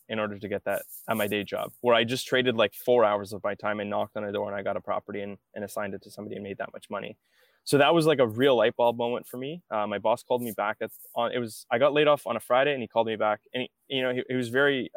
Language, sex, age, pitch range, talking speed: English, male, 20-39, 100-125 Hz, 325 wpm